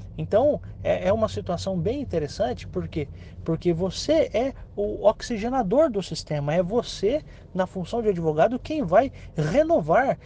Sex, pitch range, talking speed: male, 160-235 Hz, 135 wpm